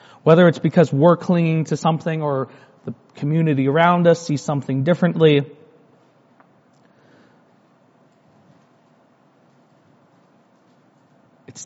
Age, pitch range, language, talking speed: 40-59, 135-165 Hz, English, 80 wpm